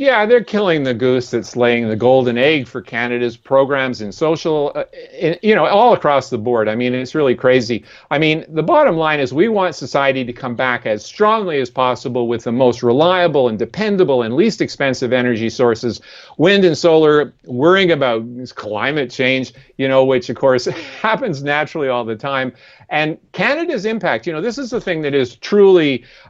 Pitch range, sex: 125-170 Hz, male